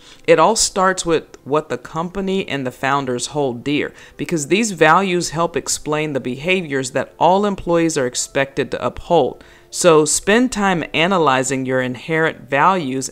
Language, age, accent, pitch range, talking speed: English, 40-59, American, 135-185 Hz, 150 wpm